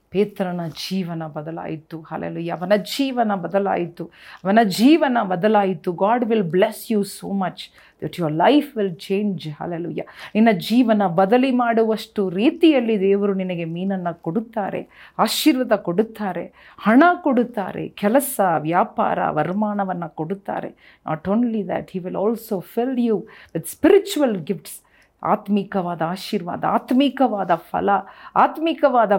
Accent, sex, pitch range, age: native, female, 180-235 Hz, 40-59